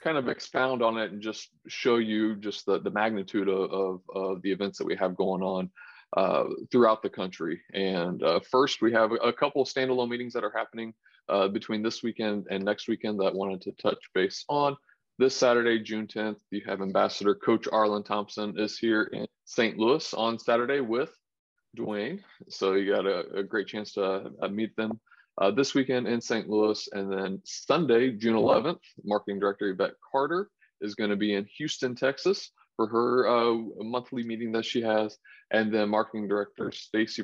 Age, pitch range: 20-39, 100-120 Hz